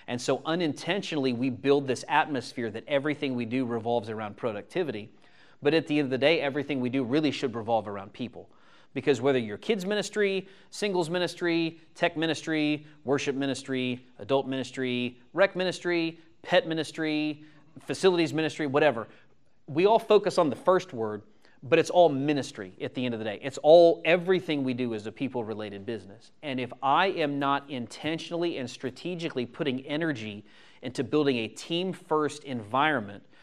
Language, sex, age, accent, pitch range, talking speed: English, male, 30-49, American, 120-155 Hz, 160 wpm